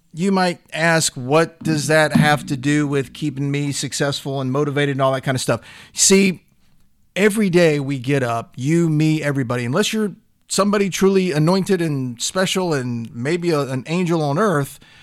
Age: 40-59